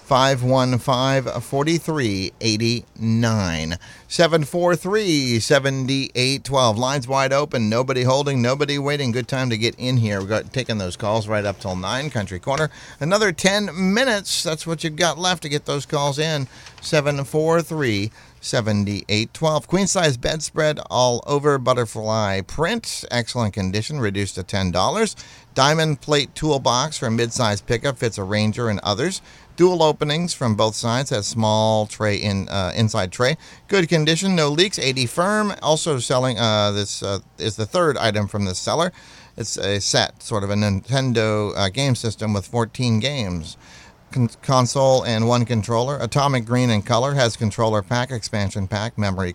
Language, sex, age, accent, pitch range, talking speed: English, male, 50-69, American, 110-150 Hz, 150 wpm